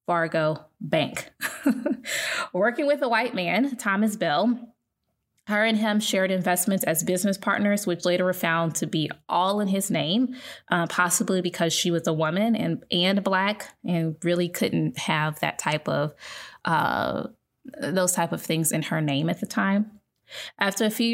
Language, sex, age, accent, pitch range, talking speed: English, female, 20-39, American, 170-210 Hz, 165 wpm